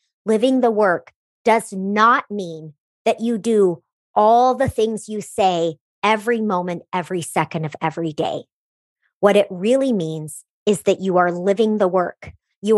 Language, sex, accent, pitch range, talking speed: English, male, American, 180-225 Hz, 155 wpm